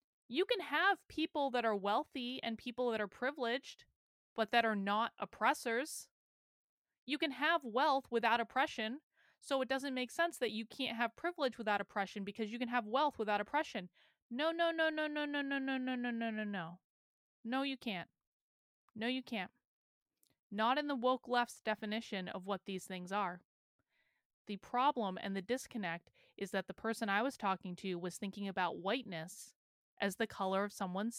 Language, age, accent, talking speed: English, 20-39, American, 180 wpm